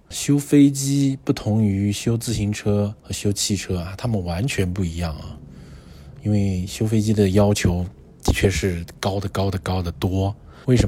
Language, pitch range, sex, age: Chinese, 90-110 Hz, male, 20-39